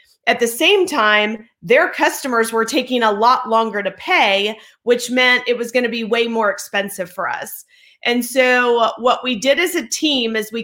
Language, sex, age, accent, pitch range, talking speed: English, female, 30-49, American, 220-270 Hz, 195 wpm